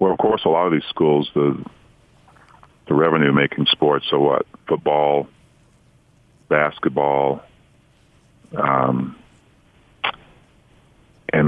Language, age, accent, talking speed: English, 40-59, American, 90 wpm